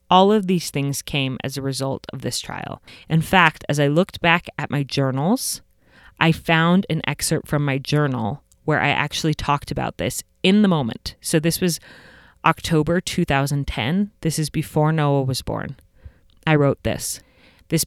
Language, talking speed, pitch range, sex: English, 170 wpm, 140-175 Hz, female